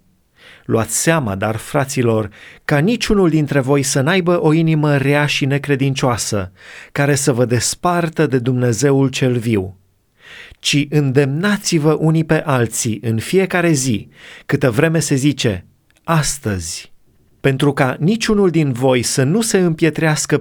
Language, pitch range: Romanian, 125-160 Hz